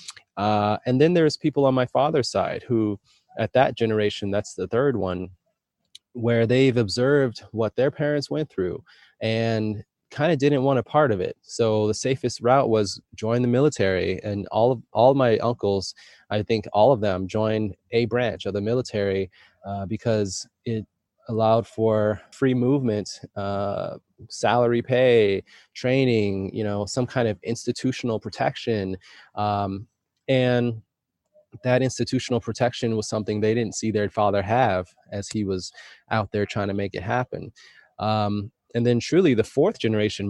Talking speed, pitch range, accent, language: 160 wpm, 105-120 Hz, American, English